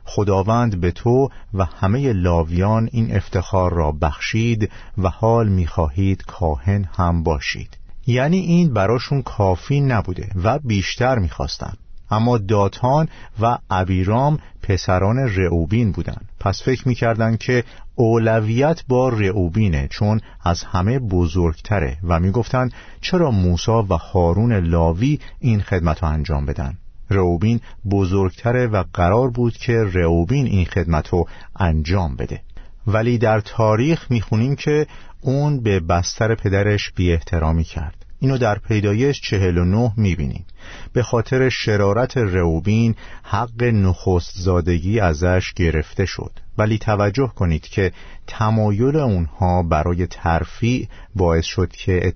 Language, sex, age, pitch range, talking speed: Persian, male, 50-69, 90-115 Hz, 120 wpm